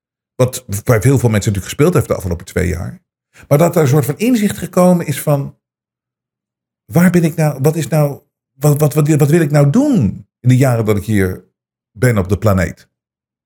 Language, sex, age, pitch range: Dutch, male, 50-69, 110-160 Hz